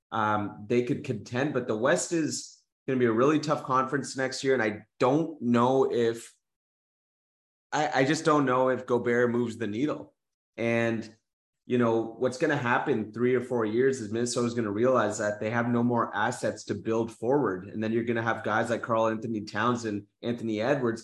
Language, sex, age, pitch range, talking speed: English, male, 30-49, 115-130 Hz, 205 wpm